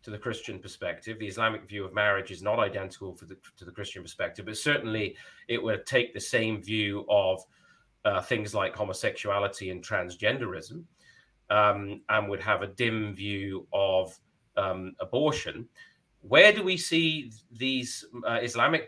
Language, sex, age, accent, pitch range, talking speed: English, male, 30-49, British, 110-135 Hz, 155 wpm